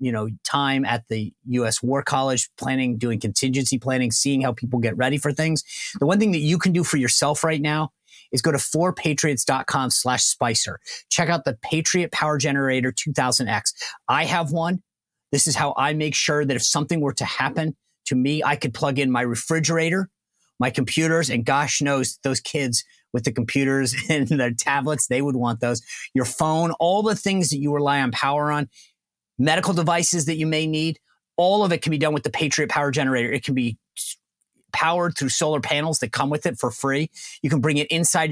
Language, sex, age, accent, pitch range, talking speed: English, male, 30-49, American, 130-160 Hz, 200 wpm